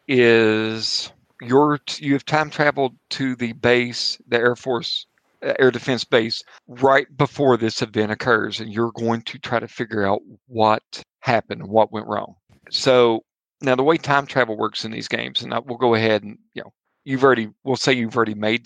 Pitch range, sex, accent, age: 115-130 Hz, male, American, 50-69